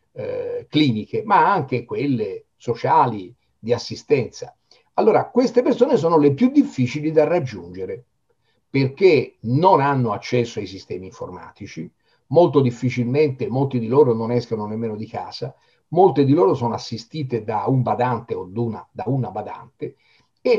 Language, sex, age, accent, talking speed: Italian, male, 50-69, native, 140 wpm